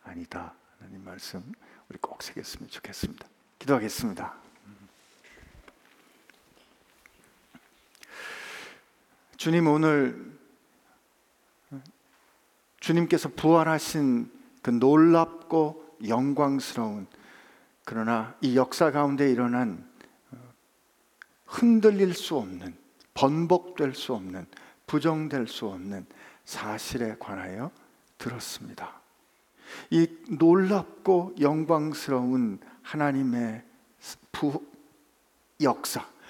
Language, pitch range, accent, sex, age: Korean, 130-165 Hz, native, male, 50-69